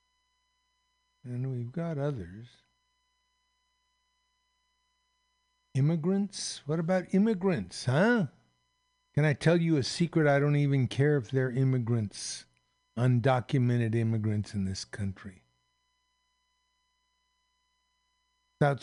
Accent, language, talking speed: American, English, 90 wpm